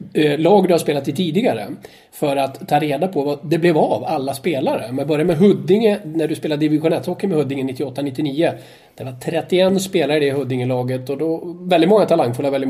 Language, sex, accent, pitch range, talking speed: English, male, Swedish, 135-170 Hz, 200 wpm